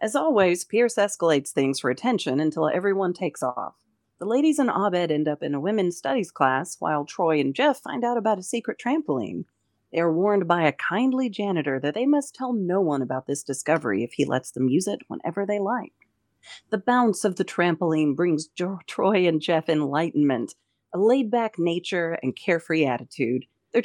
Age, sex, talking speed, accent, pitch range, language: 40-59, female, 185 wpm, American, 150-215 Hz, English